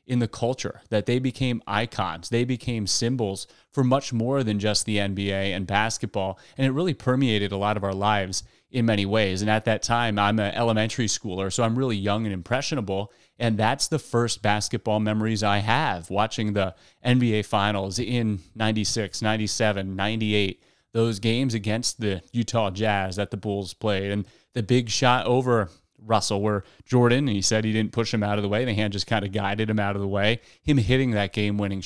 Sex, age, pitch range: male, 30-49, 100-120 Hz